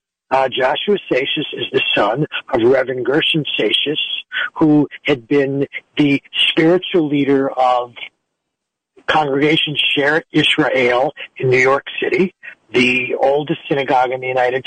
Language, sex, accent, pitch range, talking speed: English, male, American, 135-185 Hz, 125 wpm